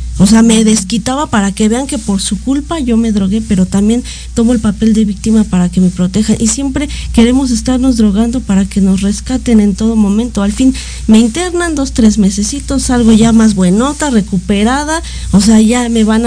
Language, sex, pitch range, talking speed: Spanish, female, 205-250 Hz, 200 wpm